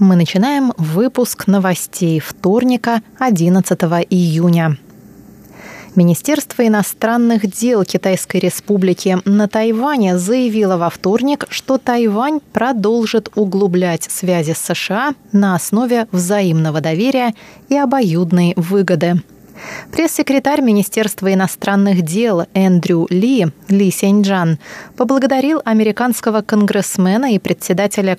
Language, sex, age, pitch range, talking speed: Russian, female, 20-39, 180-225 Hz, 95 wpm